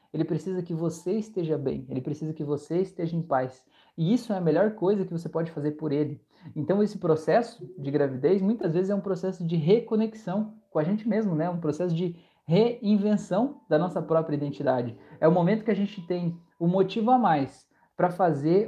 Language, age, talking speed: Portuguese, 20-39, 200 wpm